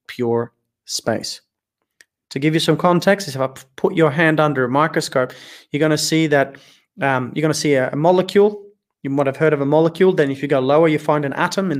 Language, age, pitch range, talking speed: English, 30-49, 140-160 Hz, 230 wpm